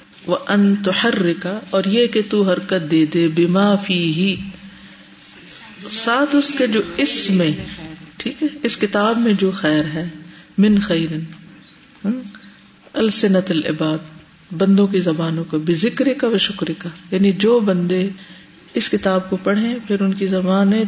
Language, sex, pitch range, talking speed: Urdu, female, 175-210 Hz, 140 wpm